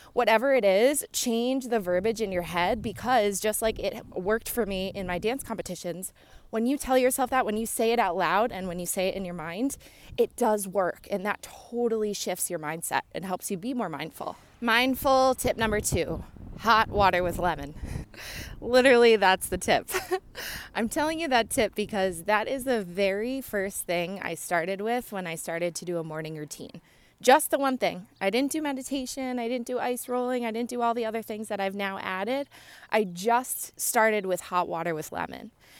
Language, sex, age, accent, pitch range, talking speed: English, female, 20-39, American, 185-240 Hz, 205 wpm